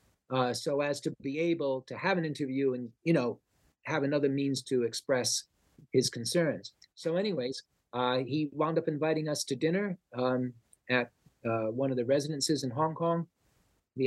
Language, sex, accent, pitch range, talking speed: English, male, American, 120-160 Hz, 175 wpm